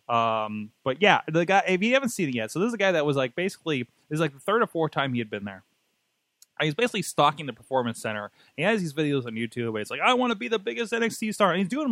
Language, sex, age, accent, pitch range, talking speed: English, male, 20-39, American, 130-190 Hz, 285 wpm